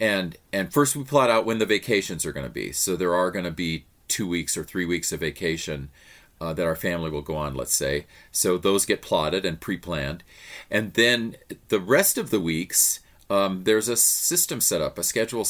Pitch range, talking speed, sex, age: 80-105 Hz, 215 wpm, male, 40-59